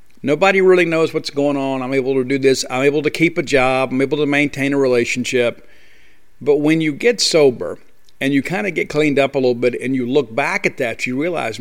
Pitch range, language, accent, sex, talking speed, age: 130-155 Hz, English, American, male, 240 wpm, 50-69